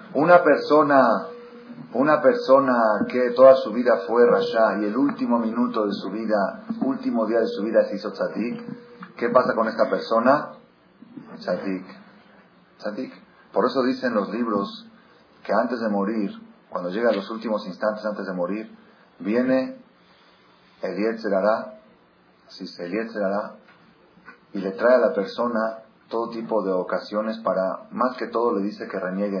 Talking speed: 145 wpm